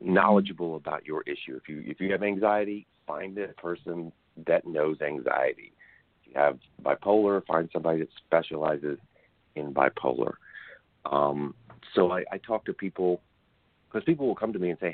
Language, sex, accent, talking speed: English, male, American, 165 wpm